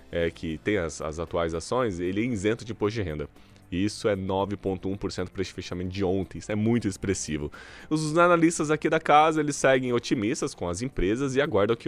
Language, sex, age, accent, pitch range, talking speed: Portuguese, male, 20-39, Brazilian, 100-135 Hz, 195 wpm